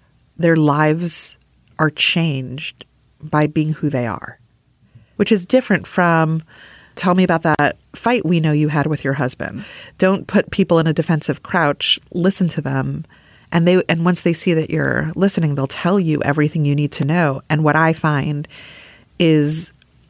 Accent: American